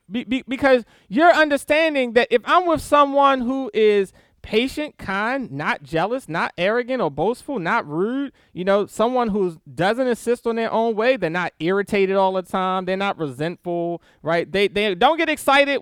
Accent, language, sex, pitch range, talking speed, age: American, English, male, 190-265 Hz, 180 wpm, 20-39